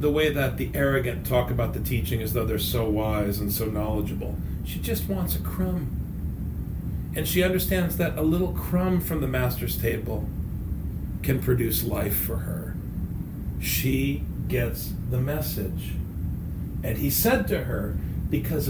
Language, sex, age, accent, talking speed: English, male, 40-59, American, 155 wpm